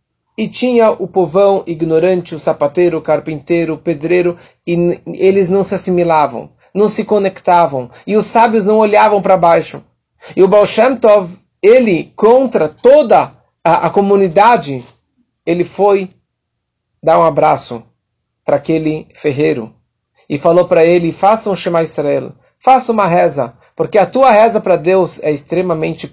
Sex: male